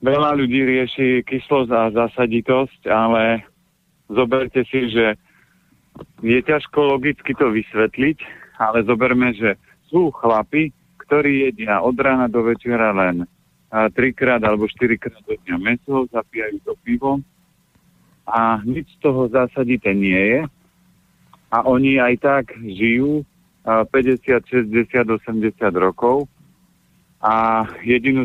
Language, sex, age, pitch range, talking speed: Slovak, male, 50-69, 110-130 Hz, 115 wpm